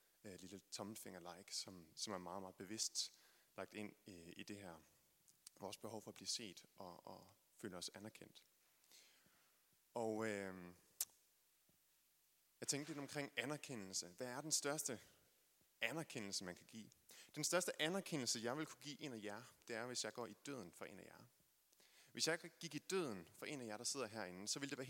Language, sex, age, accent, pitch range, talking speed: Danish, male, 30-49, native, 105-140 Hz, 185 wpm